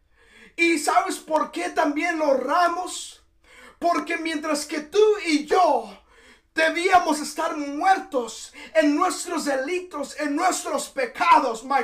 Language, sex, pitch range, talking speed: Spanish, male, 270-345 Hz, 115 wpm